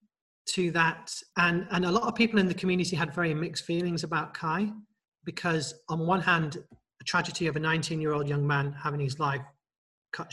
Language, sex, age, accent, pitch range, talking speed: English, male, 30-49, British, 145-165 Hz, 200 wpm